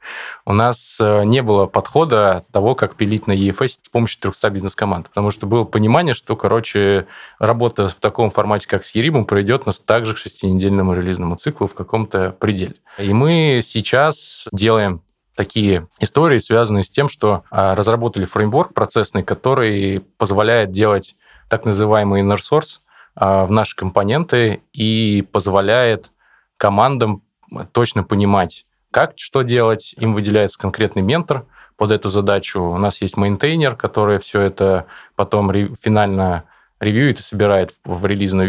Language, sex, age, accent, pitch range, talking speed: Russian, male, 20-39, native, 95-110 Hz, 140 wpm